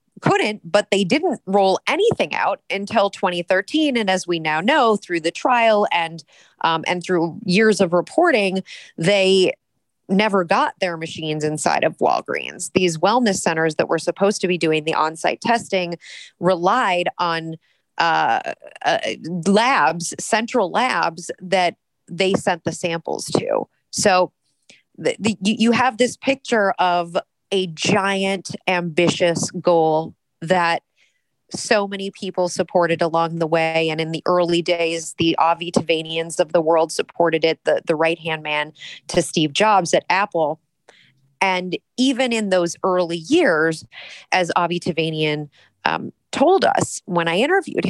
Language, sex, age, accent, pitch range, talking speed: English, female, 30-49, American, 165-200 Hz, 145 wpm